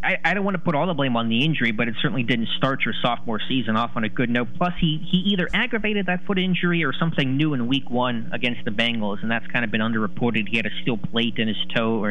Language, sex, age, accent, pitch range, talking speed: English, male, 20-39, American, 110-135 Hz, 280 wpm